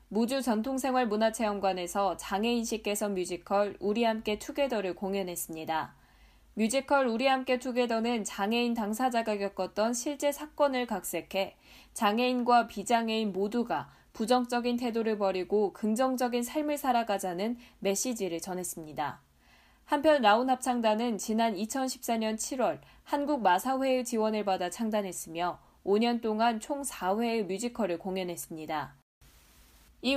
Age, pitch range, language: 10-29, 190-255 Hz, Korean